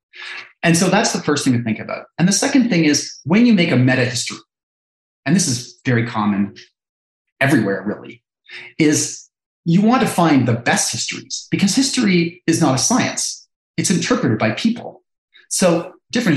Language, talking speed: English, 170 wpm